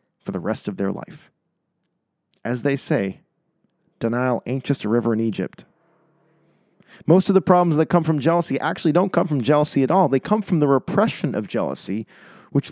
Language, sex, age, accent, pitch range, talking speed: English, male, 40-59, American, 120-165 Hz, 185 wpm